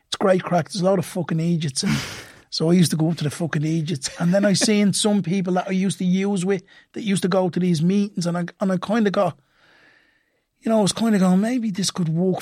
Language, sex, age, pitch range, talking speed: English, male, 30-49, 175-195 Hz, 275 wpm